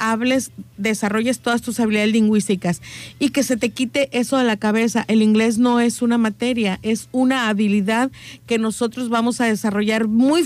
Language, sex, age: Spanish, female, 40-59